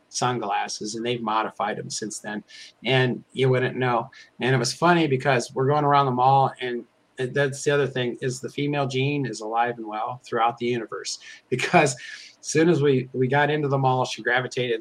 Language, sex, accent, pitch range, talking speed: English, male, American, 115-135 Hz, 200 wpm